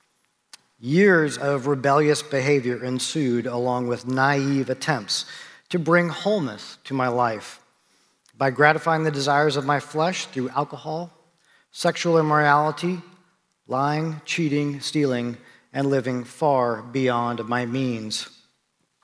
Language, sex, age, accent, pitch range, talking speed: English, male, 40-59, American, 125-160 Hz, 110 wpm